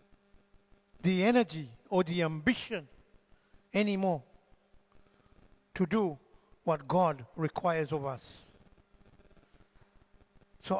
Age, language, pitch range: 60-79, English, 155-215 Hz